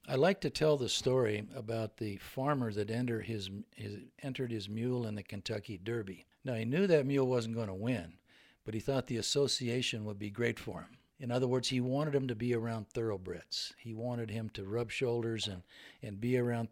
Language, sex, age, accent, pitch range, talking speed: English, male, 60-79, American, 105-130 Hz, 210 wpm